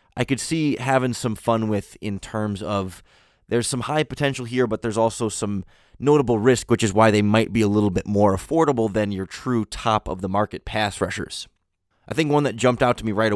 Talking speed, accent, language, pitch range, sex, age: 210 wpm, American, English, 100-125 Hz, male, 20-39